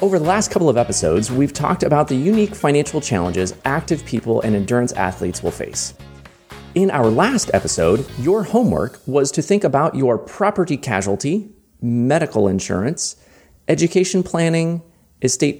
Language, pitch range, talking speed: English, 110-180 Hz, 145 wpm